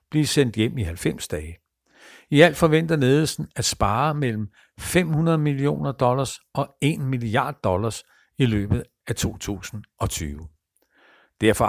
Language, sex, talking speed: Danish, male, 130 wpm